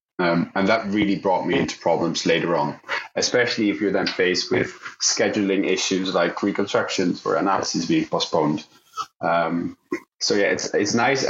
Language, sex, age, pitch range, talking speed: English, male, 20-39, 100-115 Hz, 160 wpm